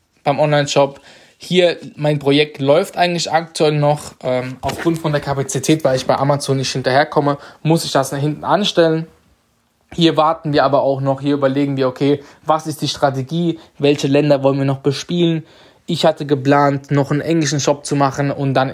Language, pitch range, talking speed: German, 135-150 Hz, 185 wpm